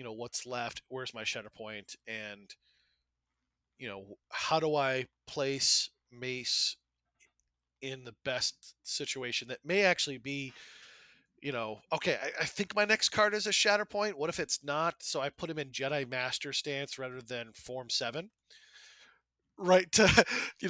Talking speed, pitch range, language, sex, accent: 165 wpm, 115-160 Hz, English, male, American